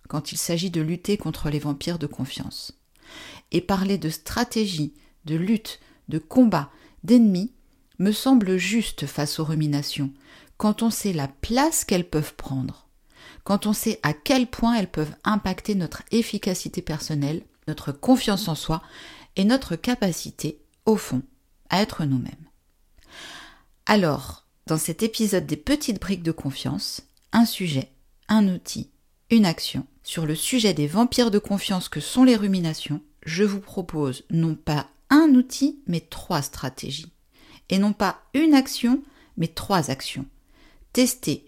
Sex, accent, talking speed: female, French, 150 wpm